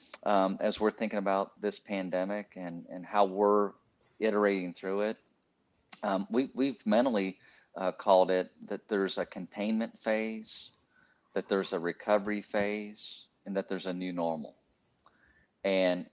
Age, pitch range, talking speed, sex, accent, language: 40-59, 90-105 Hz, 140 wpm, male, American, English